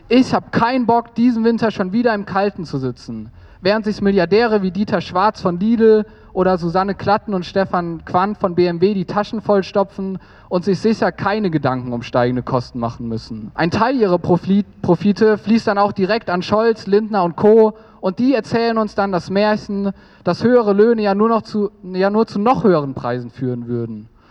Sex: male